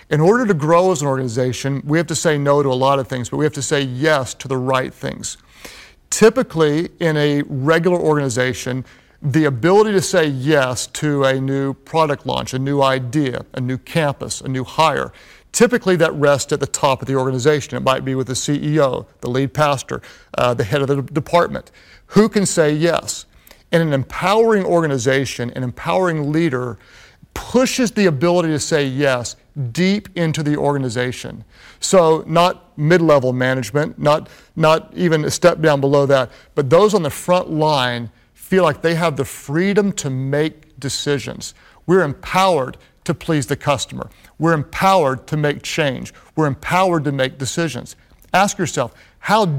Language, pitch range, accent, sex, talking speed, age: English, 135-170 Hz, American, male, 170 wpm, 40-59